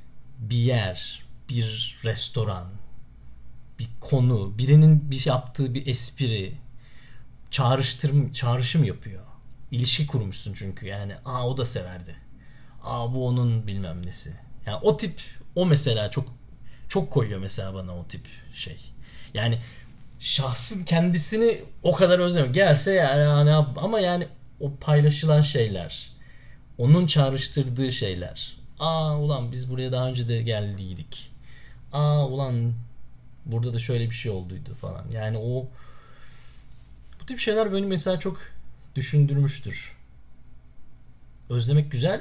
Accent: native